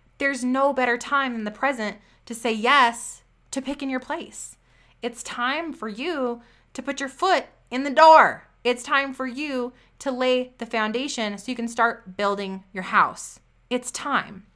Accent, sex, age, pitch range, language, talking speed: American, female, 20-39, 210-270 Hz, English, 175 wpm